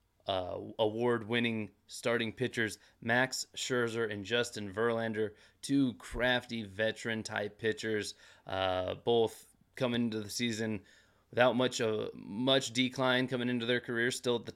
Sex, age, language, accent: male, 20-39, English, American